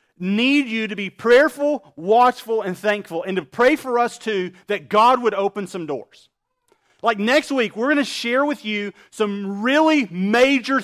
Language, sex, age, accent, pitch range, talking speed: English, male, 40-59, American, 200-255 Hz, 175 wpm